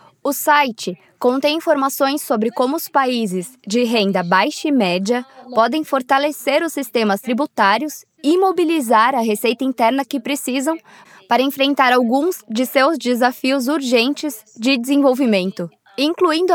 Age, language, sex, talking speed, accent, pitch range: 20-39, English, female, 125 wpm, Brazilian, 230-280 Hz